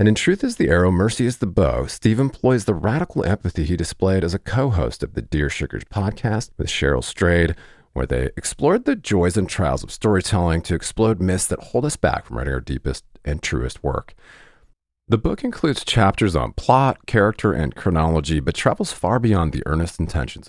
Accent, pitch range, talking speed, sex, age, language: American, 80-110 Hz, 195 wpm, male, 40-59, English